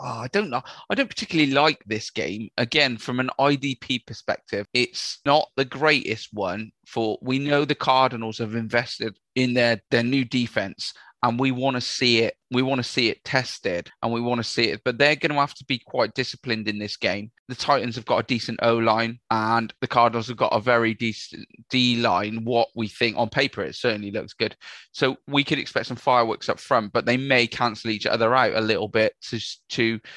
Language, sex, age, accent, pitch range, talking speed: English, male, 20-39, British, 110-130 Hz, 215 wpm